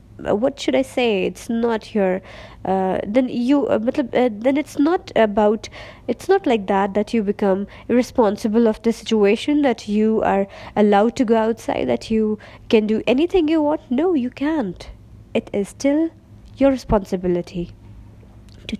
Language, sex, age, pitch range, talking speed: Urdu, female, 20-39, 185-260 Hz, 160 wpm